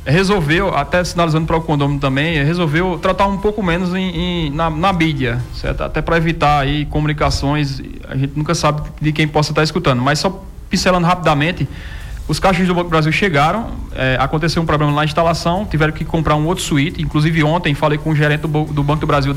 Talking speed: 205 wpm